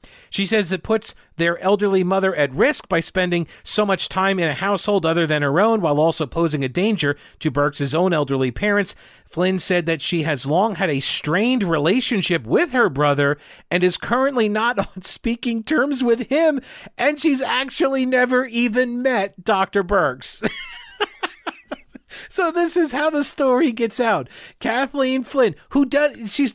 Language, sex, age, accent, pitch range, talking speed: English, male, 40-59, American, 160-240 Hz, 165 wpm